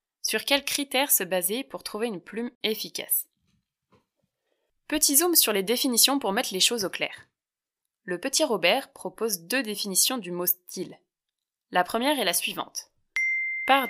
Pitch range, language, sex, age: 180-255 Hz, French, female, 20-39